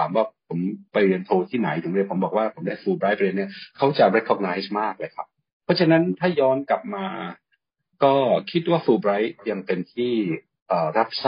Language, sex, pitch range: Thai, male, 95-140 Hz